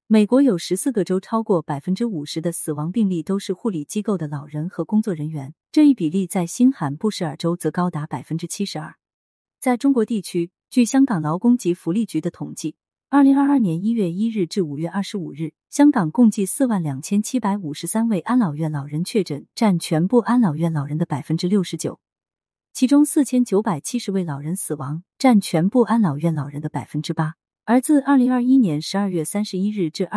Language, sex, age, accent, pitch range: Chinese, female, 30-49, native, 160-225 Hz